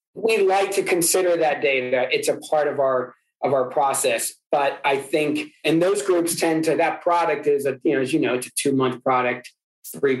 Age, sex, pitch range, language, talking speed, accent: 40-59, male, 130-165 Hz, English, 210 wpm, American